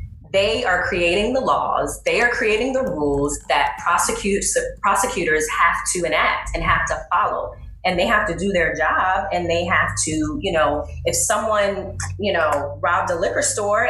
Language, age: English, 20-39